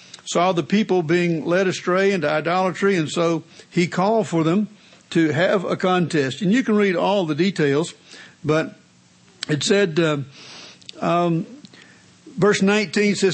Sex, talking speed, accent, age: male, 145 wpm, American, 60-79